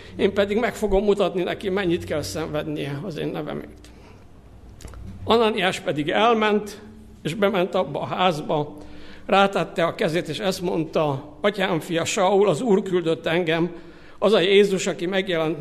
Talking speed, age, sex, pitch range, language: 145 wpm, 60-79, male, 155-195 Hz, Hungarian